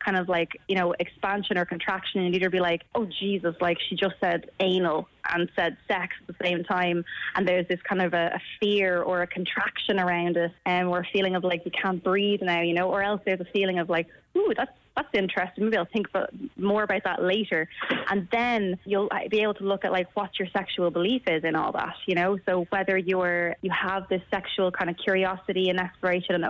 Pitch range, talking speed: 180-200 Hz, 235 wpm